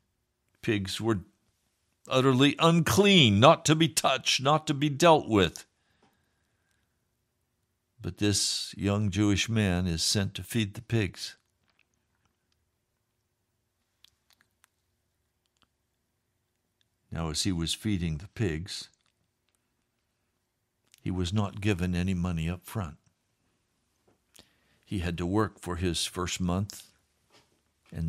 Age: 60-79